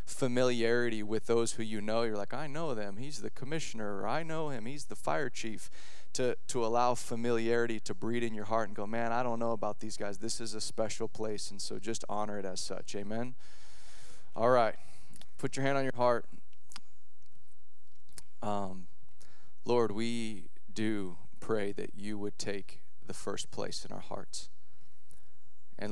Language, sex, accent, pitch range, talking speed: English, male, American, 100-115 Hz, 175 wpm